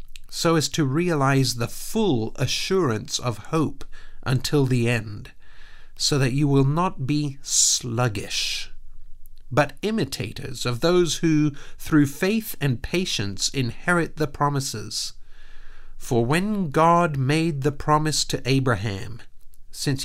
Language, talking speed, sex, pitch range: English, 120 wpm, male, 115-145 Hz